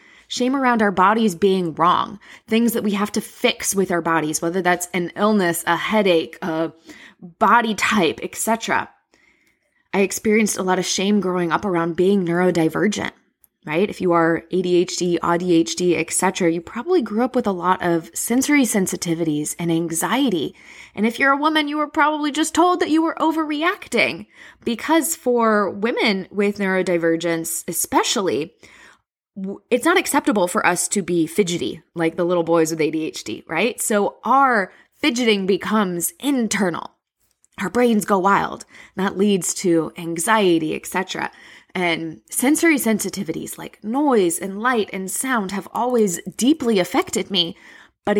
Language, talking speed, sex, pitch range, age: English, 150 wpm, female, 175-235 Hz, 20-39